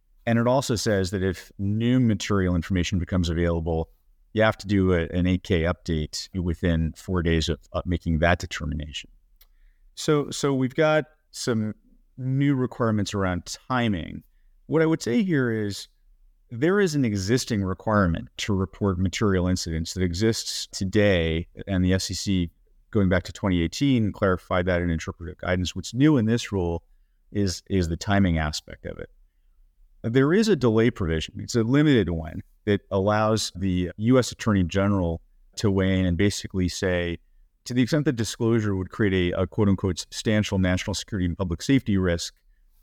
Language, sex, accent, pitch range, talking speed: English, male, American, 85-110 Hz, 165 wpm